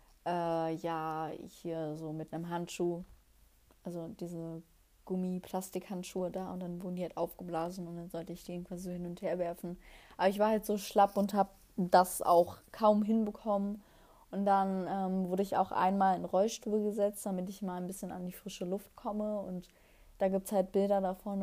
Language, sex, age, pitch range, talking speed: German, female, 20-39, 180-200 Hz, 180 wpm